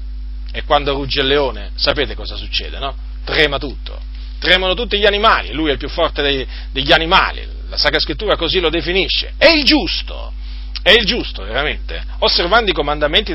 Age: 40-59